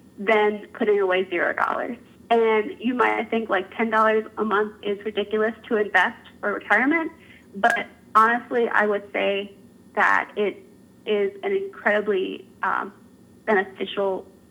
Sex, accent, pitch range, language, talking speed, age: female, American, 215-275 Hz, English, 130 wpm, 20-39